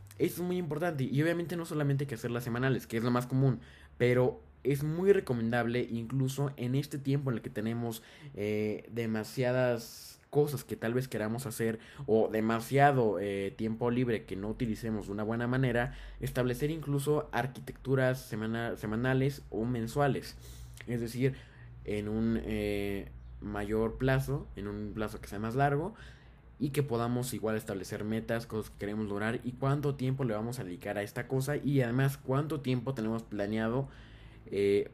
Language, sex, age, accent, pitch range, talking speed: Spanish, male, 20-39, Mexican, 105-130 Hz, 165 wpm